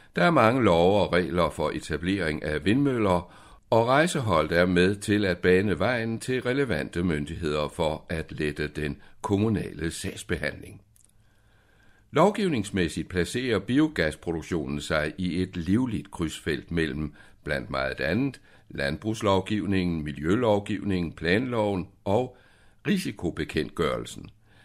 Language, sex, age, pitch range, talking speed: Danish, male, 60-79, 80-110 Hz, 105 wpm